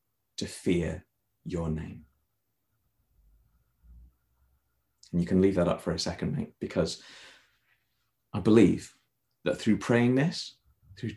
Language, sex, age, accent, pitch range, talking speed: English, male, 30-49, British, 95-115 Hz, 120 wpm